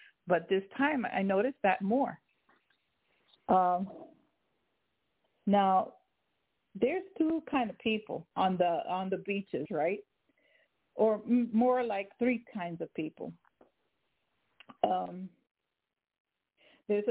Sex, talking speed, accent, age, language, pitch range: female, 105 wpm, American, 50-69, English, 195-250 Hz